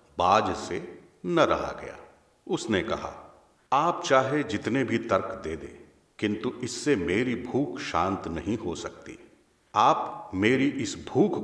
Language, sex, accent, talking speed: Hindi, male, native, 135 wpm